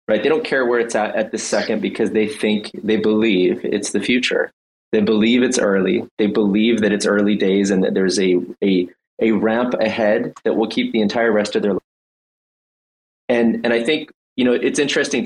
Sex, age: male, 20-39